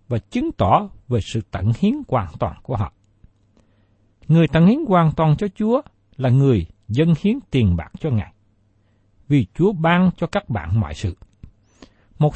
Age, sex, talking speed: 60-79, male, 170 wpm